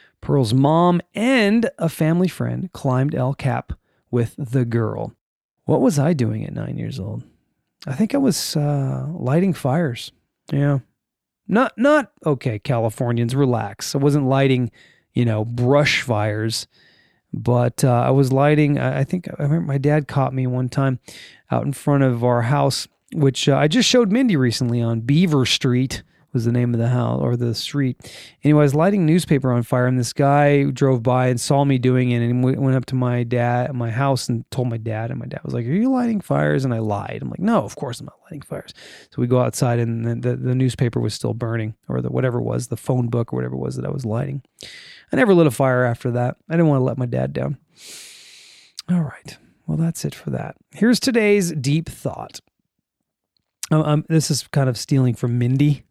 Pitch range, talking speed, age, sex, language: 120-150 Hz, 205 wpm, 30-49, male, English